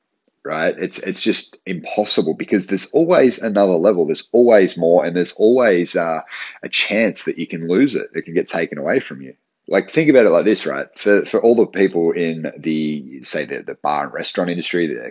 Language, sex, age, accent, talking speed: English, male, 30-49, Australian, 210 wpm